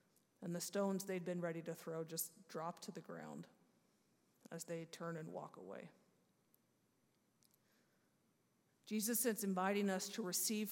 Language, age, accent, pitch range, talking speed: English, 50-69, American, 180-225 Hz, 140 wpm